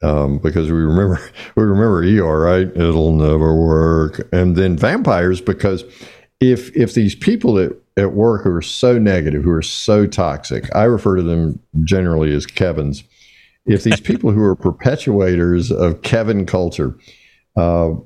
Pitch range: 85-105 Hz